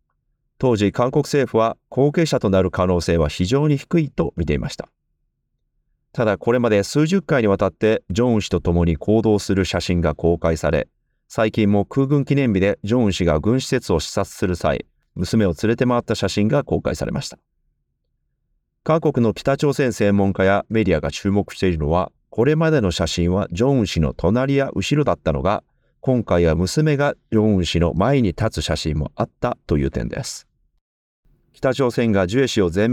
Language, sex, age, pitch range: Japanese, male, 40-59, 90-130 Hz